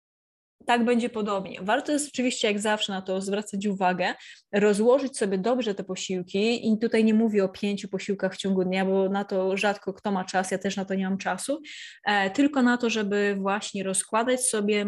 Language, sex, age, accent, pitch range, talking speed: Polish, female, 20-39, native, 195-225 Hz, 200 wpm